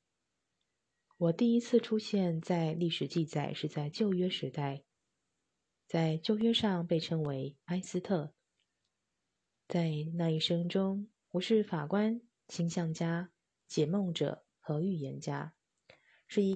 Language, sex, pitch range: Chinese, female, 155-190 Hz